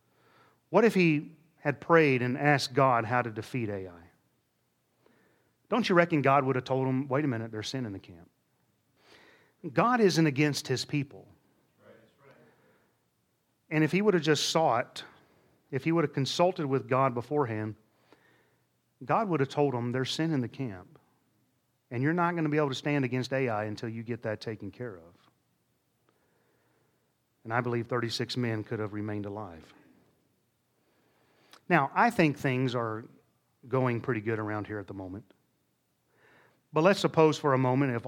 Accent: American